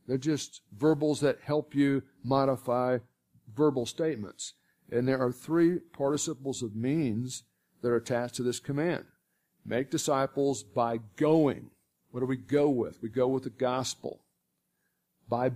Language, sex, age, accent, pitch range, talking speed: English, male, 50-69, American, 115-140 Hz, 145 wpm